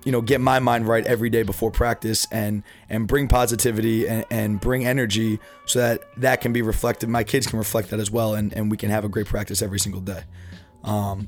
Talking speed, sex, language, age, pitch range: 230 wpm, male, English, 20-39, 110-125 Hz